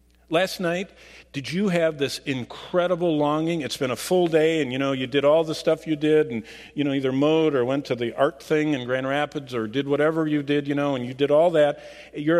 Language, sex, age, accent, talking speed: English, male, 50-69, American, 240 wpm